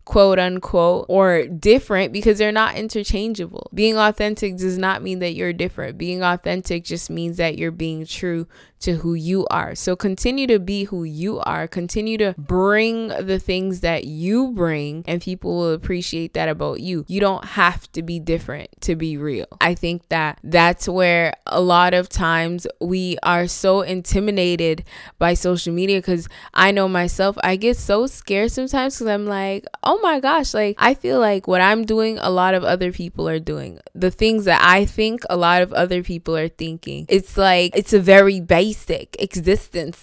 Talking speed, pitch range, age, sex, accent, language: 185 wpm, 175-220 Hz, 20-39, female, American, English